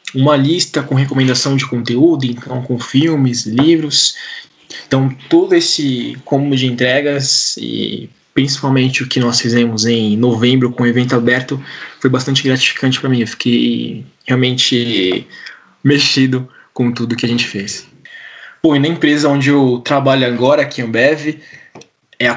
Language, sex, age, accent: Portuguese, male, 20-39, Brazilian